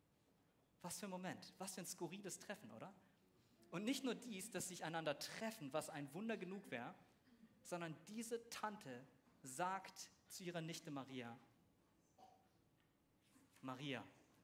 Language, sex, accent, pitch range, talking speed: English, male, German, 140-195 Hz, 135 wpm